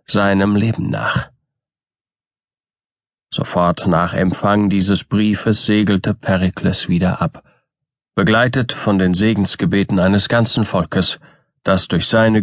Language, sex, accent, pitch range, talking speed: German, male, German, 100-115 Hz, 105 wpm